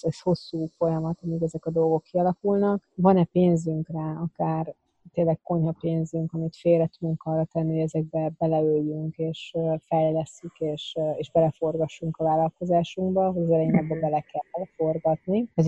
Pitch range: 160-180 Hz